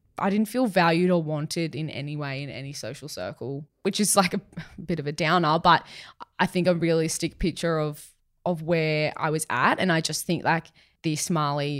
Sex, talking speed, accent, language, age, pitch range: female, 205 wpm, Australian, English, 20-39, 145-170 Hz